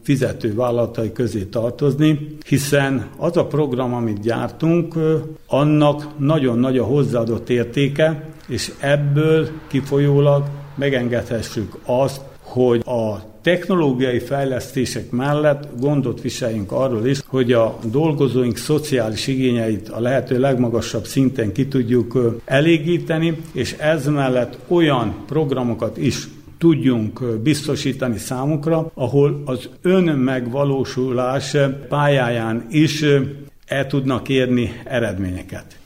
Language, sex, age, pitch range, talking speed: Hungarian, male, 60-79, 120-145 Hz, 100 wpm